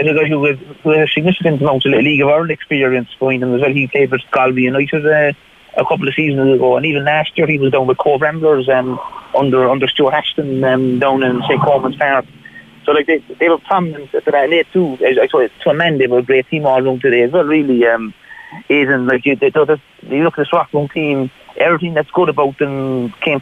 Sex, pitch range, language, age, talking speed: male, 135-155 Hz, English, 30-49, 230 wpm